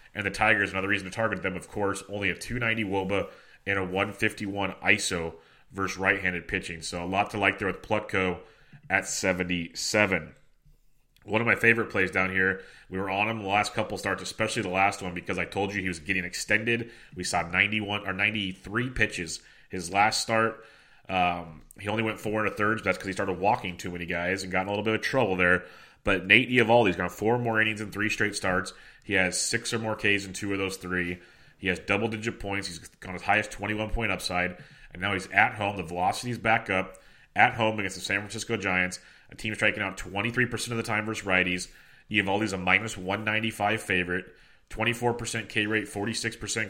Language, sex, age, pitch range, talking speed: English, male, 30-49, 95-110 Hz, 205 wpm